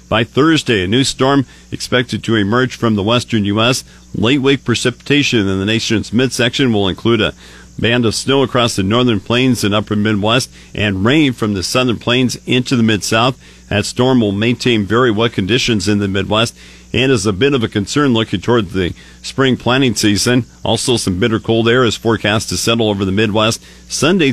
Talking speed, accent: 185 wpm, American